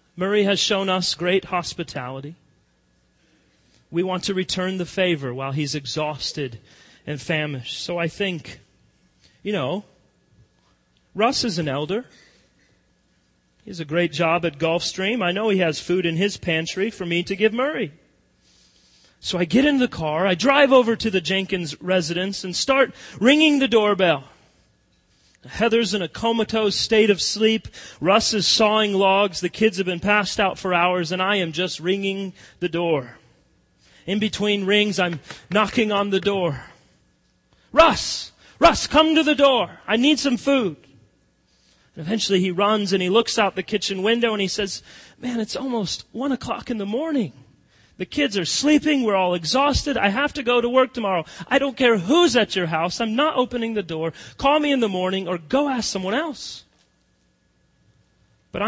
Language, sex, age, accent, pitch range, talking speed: English, male, 40-59, American, 170-245 Hz, 170 wpm